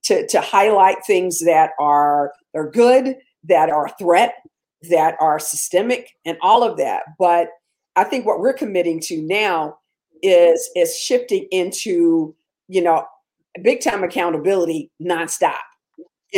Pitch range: 170-250 Hz